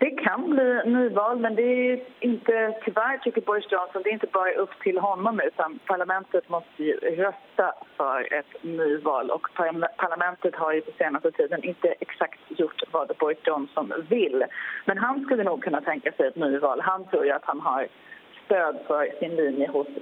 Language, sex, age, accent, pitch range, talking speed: Swedish, female, 30-49, native, 180-260 Hz, 185 wpm